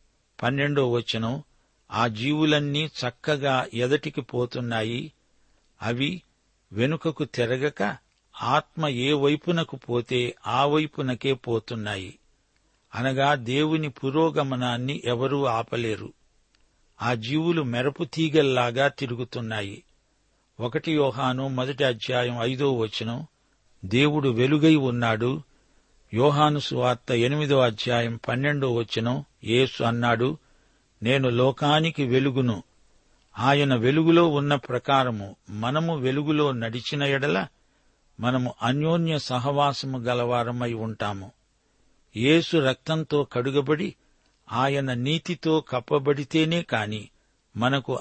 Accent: native